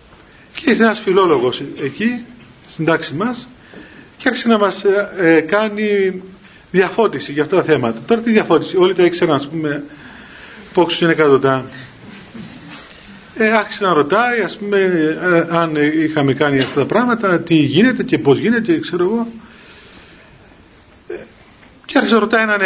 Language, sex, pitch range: Greek, male, 160-215 Hz